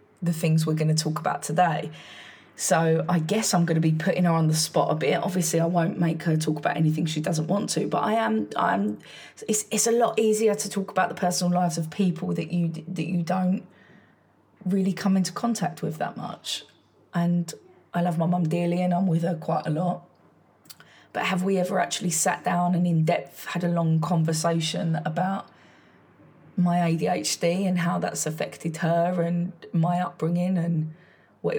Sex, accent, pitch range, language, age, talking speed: female, British, 160-180 Hz, English, 20-39, 195 wpm